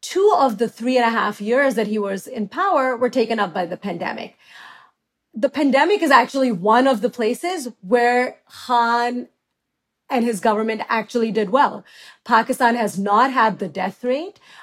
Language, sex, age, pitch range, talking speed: English, female, 30-49, 215-255 Hz, 170 wpm